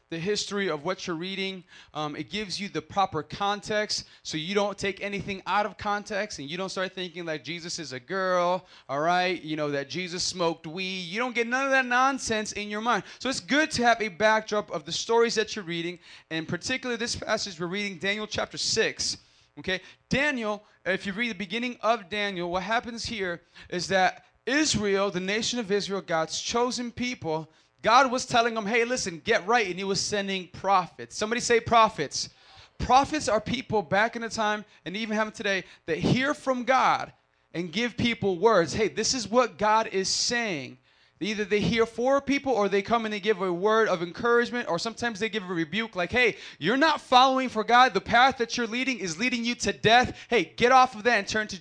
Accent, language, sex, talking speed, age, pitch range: American, English, male, 210 wpm, 30-49, 180-235 Hz